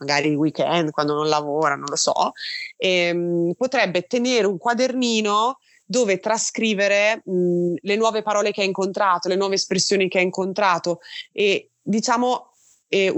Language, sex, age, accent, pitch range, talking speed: Italian, female, 20-39, native, 175-235 Hz, 145 wpm